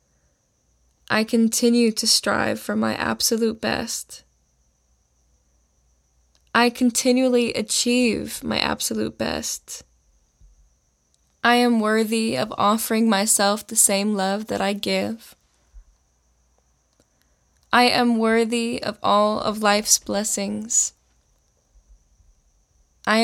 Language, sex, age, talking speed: English, female, 10-29, 90 wpm